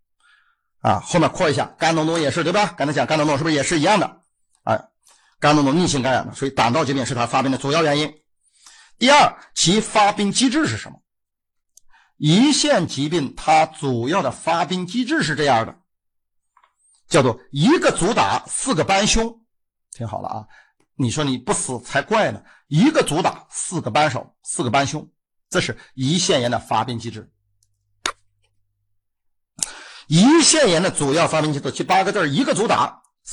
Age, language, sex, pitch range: 50-69, Chinese, male, 120-195 Hz